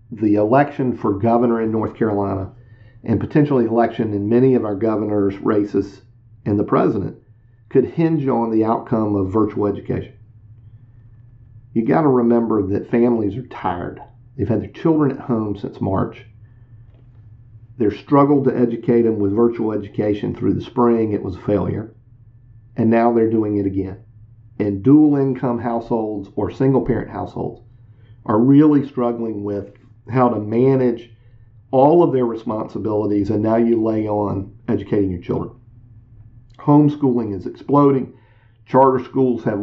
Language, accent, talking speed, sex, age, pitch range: English, American, 145 wpm, male, 50-69, 110-125 Hz